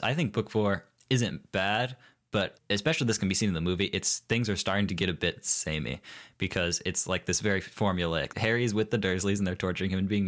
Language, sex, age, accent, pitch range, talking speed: English, male, 20-39, American, 85-105 Hz, 235 wpm